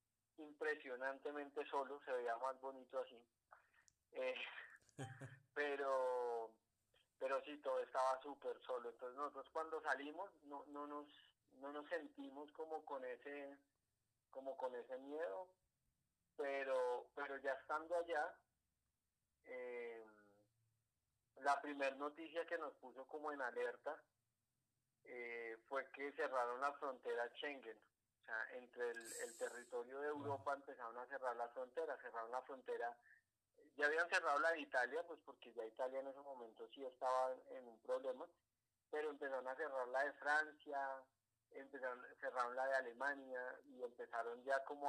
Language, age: Spanish, 30-49